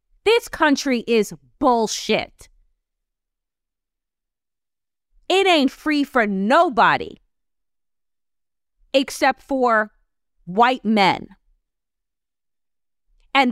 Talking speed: 60 wpm